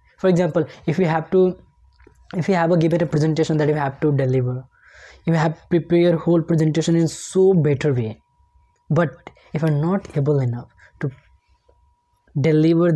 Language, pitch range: English, 140-175 Hz